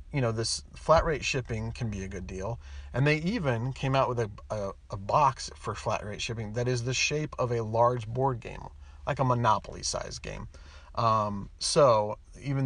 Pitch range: 110-135 Hz